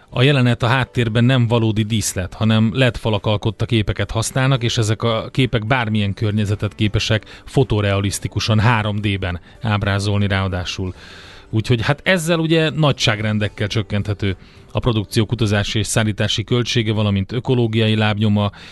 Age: 30-49